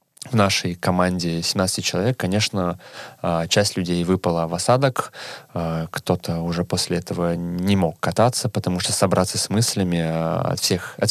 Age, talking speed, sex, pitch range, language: 20-39, 135 wpm, male, 85-105 Hz, Russian